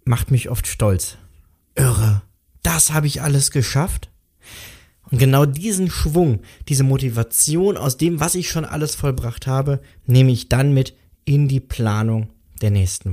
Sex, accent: male, German